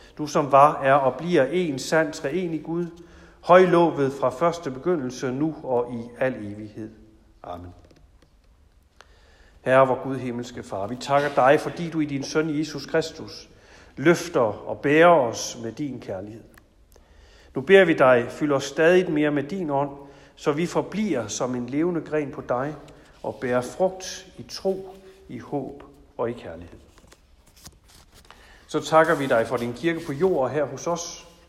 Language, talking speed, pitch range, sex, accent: Danish, 160 wpm, 110-165 Hz, male, native